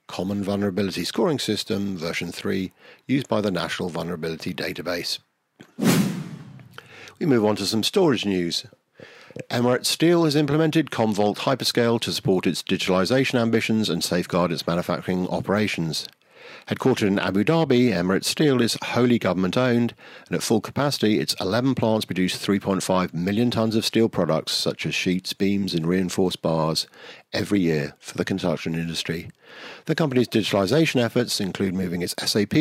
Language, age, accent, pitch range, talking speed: English, 50-69, British, 90-125 Hz, 145 wpm